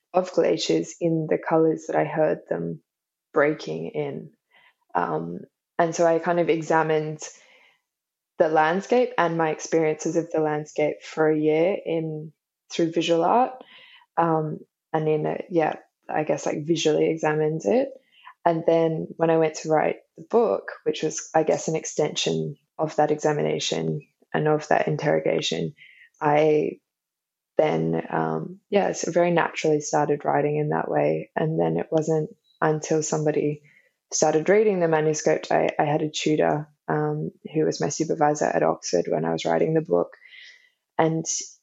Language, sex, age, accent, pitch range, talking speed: English, female, 20-39, Australian, 150-170 Hz, 155 wpm